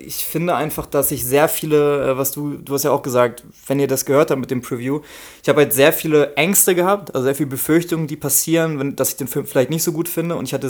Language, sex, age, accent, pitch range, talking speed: German, male, 20-39, German, 130-150 Hz, 270 wpm